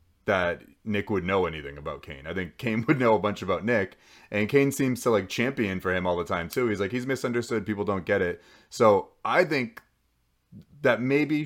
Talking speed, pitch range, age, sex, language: 215 wpm, 100-130 Hz, 30-49, male, English